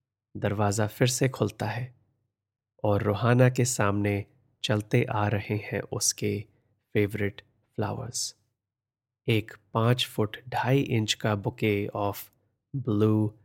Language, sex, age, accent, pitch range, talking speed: Hindi, male, 30-49, native, 105-120 Hz, 110 wpm